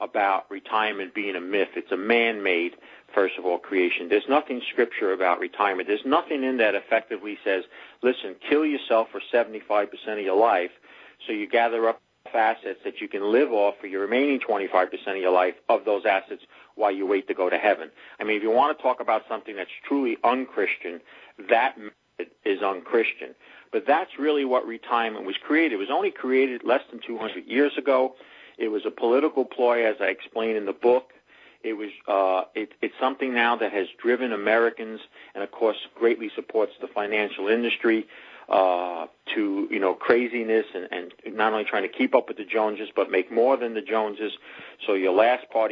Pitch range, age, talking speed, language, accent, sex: 105-145 Hz, 50-69, 190 wpm, English, American, male